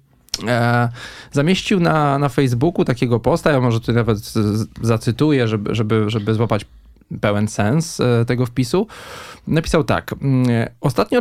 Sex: male